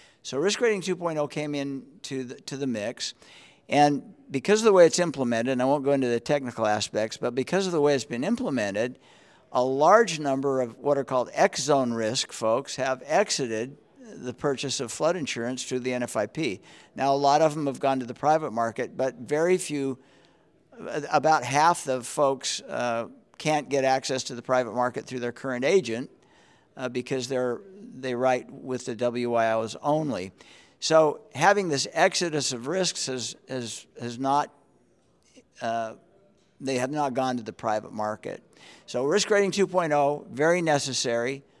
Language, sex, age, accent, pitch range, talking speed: English, male, 50-69, American, 125-155 Hz, 170 wpm